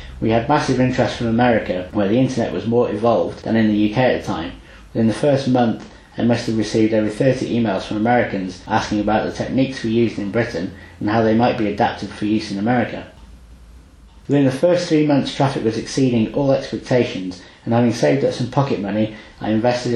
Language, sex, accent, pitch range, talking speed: English, male, British, 105-130 Hz, 205 wpm